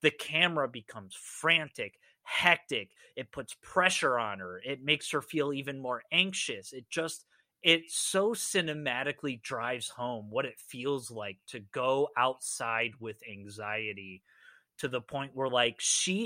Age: 30-49